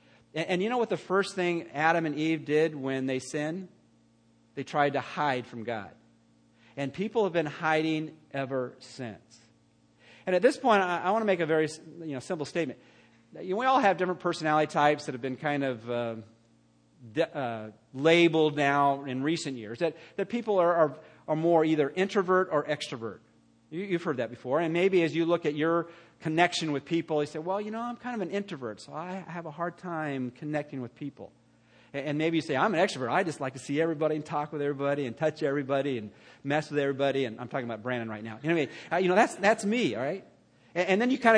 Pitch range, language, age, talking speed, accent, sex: 130-175 Hz, English, 40-59, 215 wpm, American, male